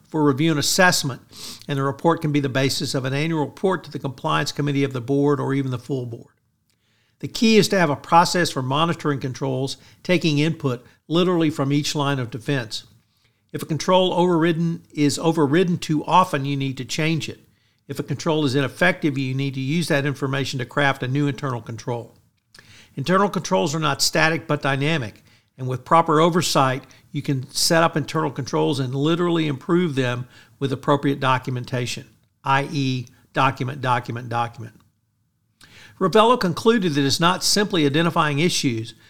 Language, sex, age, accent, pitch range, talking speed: English, male, 50-69, American, 125-160 Hz, 170 wpm